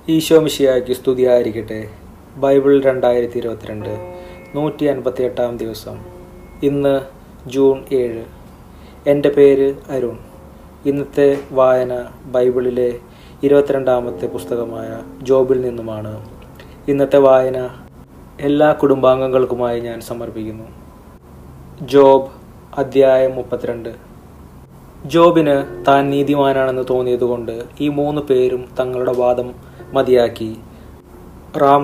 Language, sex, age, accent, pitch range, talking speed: Malayalam, male, 30-49, native, 120-135 Hz, 85 wpm